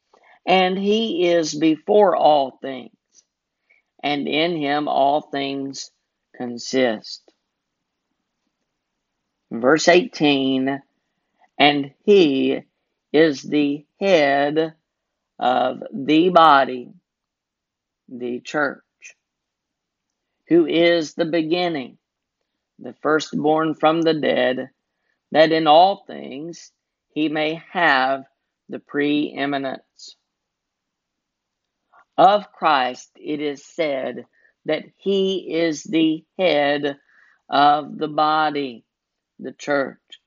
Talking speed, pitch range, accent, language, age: 85 wpm, 140-165 Hz, American, English, 50-69